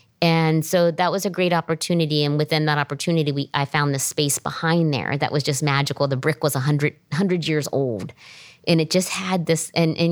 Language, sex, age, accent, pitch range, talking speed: English, female, 40-59, American, 150-180 Hz, 215 wpm